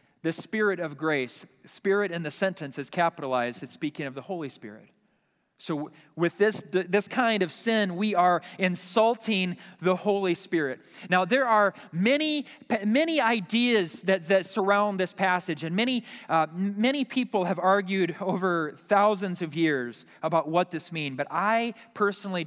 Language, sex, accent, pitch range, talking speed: English, male, American, 155-195 Hz, 155 wpm